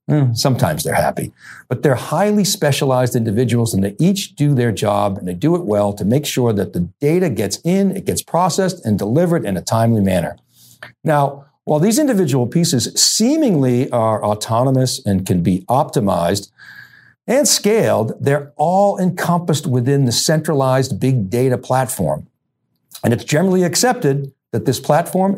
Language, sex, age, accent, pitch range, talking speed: English, male, 60-79, American, 115-180 Hz, 155 wpm